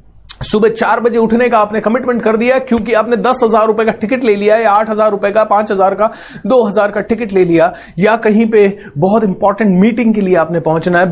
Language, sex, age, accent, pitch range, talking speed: Hindi, male, 30-49, native, 155-210 Hz, 230 wpm